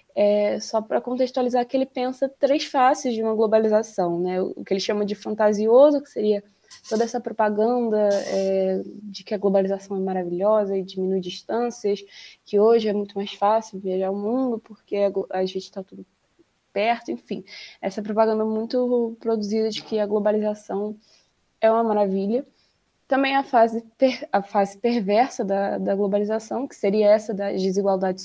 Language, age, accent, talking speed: Portuguese, 20-39, Brazilian, 160 wpm